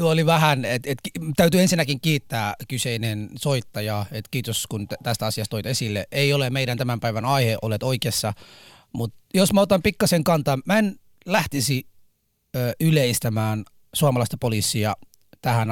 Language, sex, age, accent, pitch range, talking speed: Finnish, male, 30-49, native, 115-140 Hz, 150 wpm